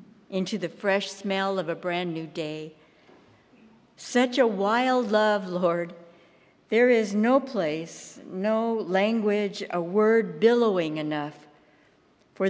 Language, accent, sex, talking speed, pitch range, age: English, American, female, 120 wpm, 175-230 Hz, 60-79